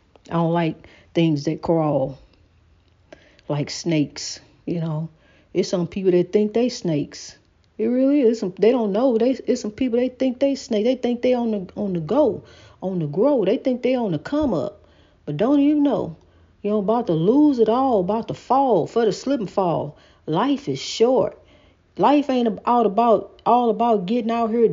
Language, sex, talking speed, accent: English, female, 195 wpm, American